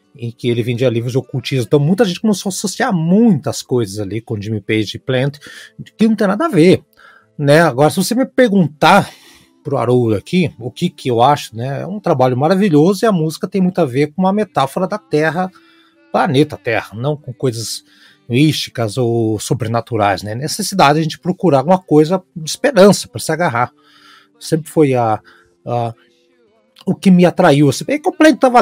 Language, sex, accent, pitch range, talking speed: Portuguese, male, Brazilian, 120-180 Hz, 190 wpm